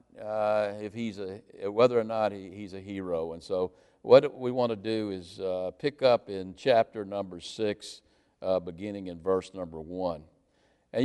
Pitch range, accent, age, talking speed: 105-145 Hz, American, 60-79, 175 wpm